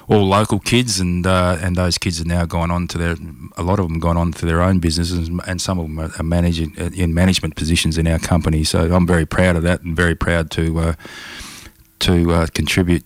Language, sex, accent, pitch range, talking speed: English, male, Australian, 80-90 Hz, 230 wpm